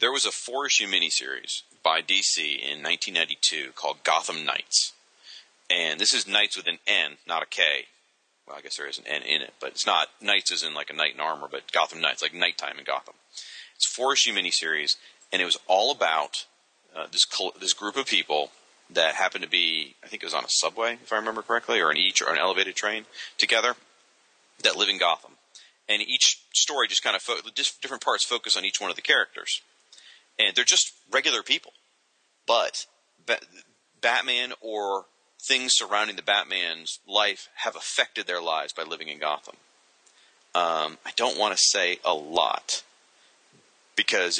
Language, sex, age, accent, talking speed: English, male, 30-49, American, 190 wpm